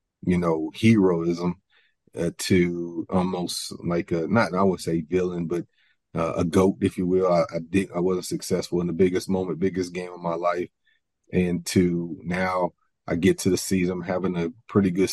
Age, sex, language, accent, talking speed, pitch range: 30-49, male, English, American, 190 wpm, 85-95 Hz